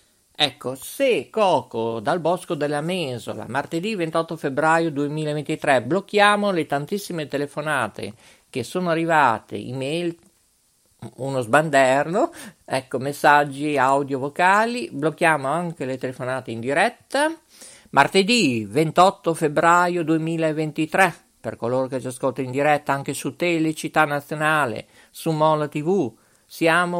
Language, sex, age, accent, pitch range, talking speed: Italian, male, 50-69, native, 135-175 Hz, 110 wpm